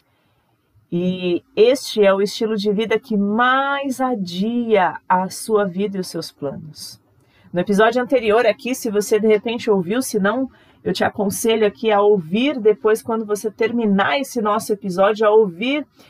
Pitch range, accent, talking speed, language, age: 190-240 Hz, Brazilian, 160 wpm, Portuguese, 40-59